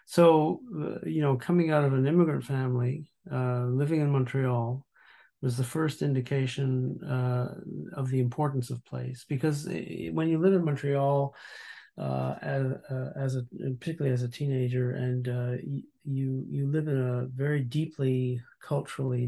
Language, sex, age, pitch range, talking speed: English, male, 50-69, 125-145 Hz, 145 wpm